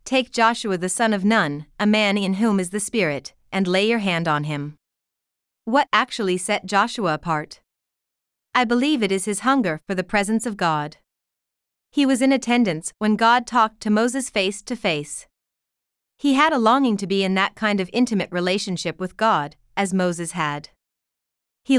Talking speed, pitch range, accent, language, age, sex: 180 wpm, 175-225 Hz, American, English, 30-49, female